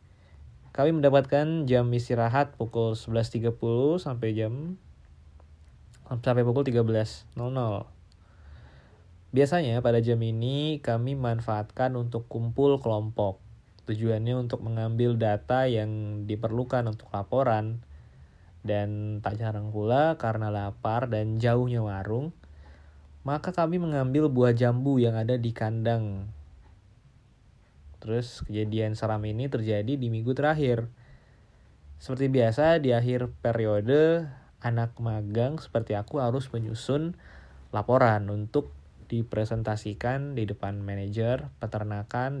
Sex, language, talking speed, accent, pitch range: male, Indonesian, 100 wpm, native, 105-125 Hz